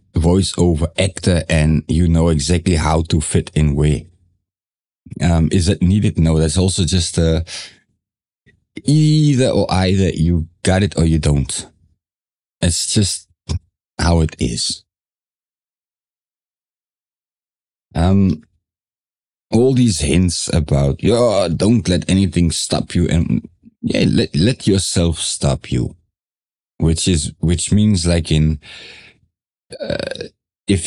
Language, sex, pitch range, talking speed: English, male, 80-100 Hz, 120 wpm